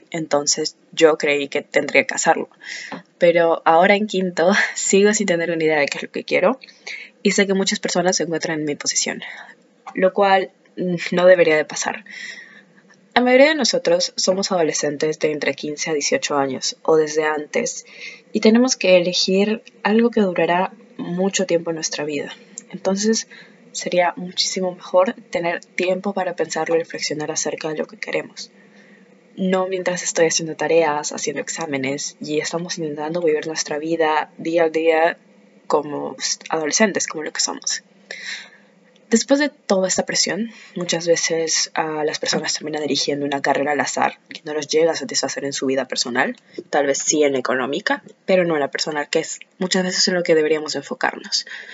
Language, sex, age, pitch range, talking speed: Spanish, female, 20-39, 155-195 Hz, 170 wpm